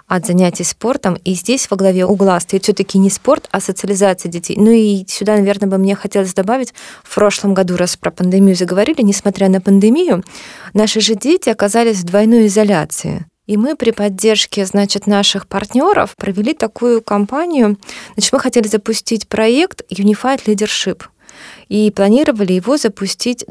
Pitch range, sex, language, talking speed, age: 195-225 Hz, female, Russian, 160 wpm, 20-39